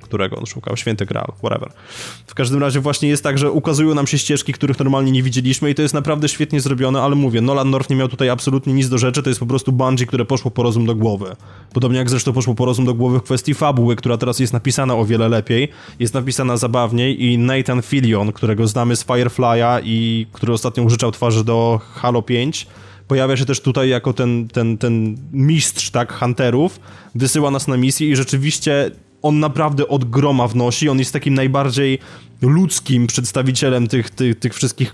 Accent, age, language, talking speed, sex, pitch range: native, 20-39, Polish, 200 wpm, male, 120-135 Hz